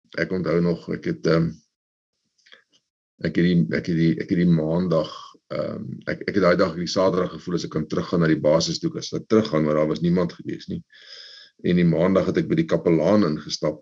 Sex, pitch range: male, 80-110 Hz